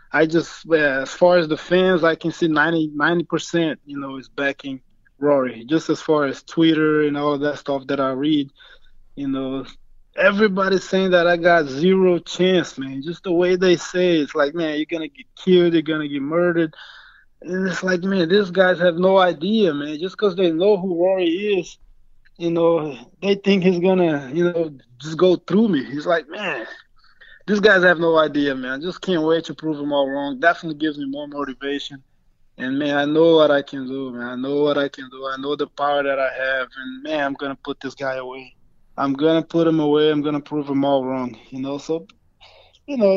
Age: 20-39